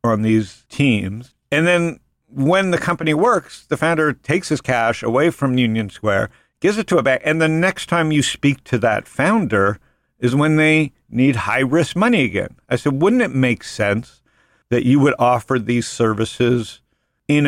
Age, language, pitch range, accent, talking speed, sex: 50-69, English, 110-155 Hz, American, 185 wpm, male